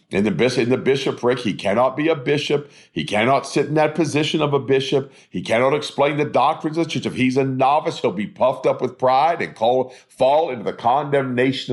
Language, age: English, 50-69